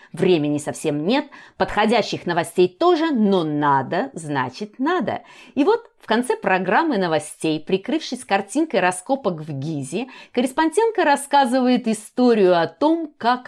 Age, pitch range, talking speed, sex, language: 30-49, 170-245 Hz, 120 wpm, female, Russian